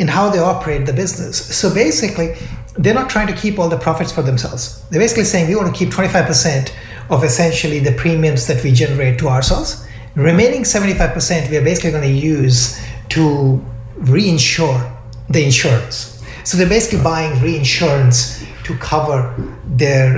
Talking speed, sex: 160 wpm, male